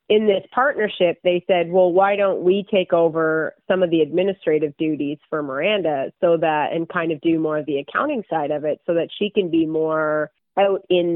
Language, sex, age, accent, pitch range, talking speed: English, female, 30-49, American, 155-190 Hz, 210 wpm